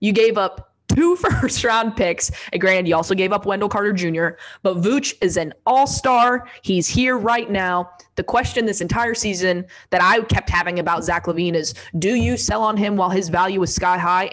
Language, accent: English, American